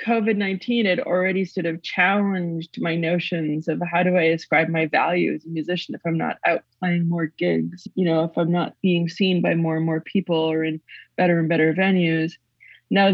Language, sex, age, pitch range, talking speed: English, female, 20-39, 155-180 Hz, 200 wpm